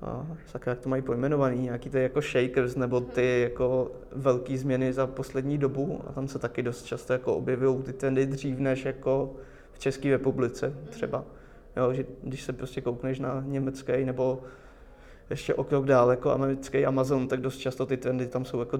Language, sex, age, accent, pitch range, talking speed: Czech, male, 20-39, native, 125-135 Hz, 180 wpm